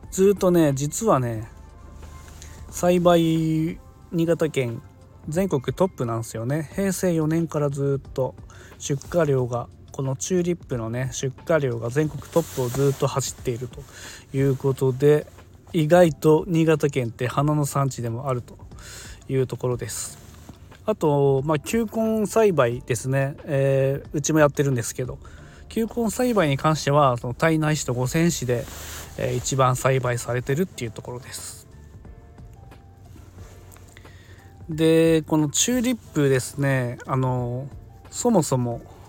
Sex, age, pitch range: male, 20-39, 115-160 Hz